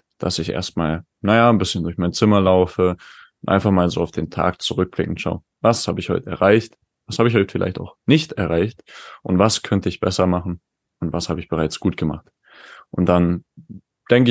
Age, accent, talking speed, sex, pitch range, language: 20-39, German, 200 wpm, male, 90-105 Hz, German